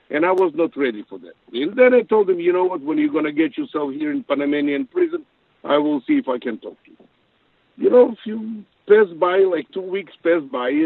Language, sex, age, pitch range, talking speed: English, male, 50-69, 140-225 Hz, 250 wpm